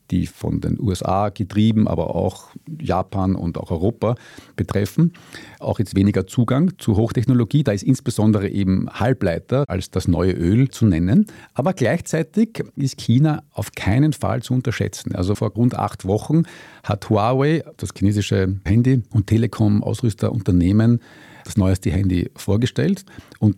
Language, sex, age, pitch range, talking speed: German, male, 50-69, 100-135 Hz, 140 wpm